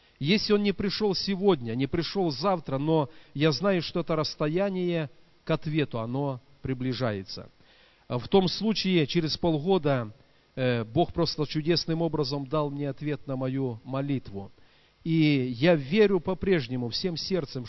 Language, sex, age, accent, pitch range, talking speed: Russian, male, 40-59, native, 135-175 Hz, 130 wpm